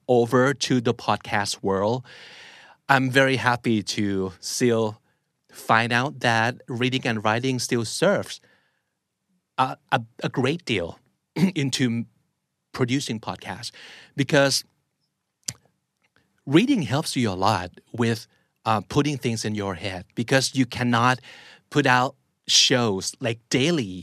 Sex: male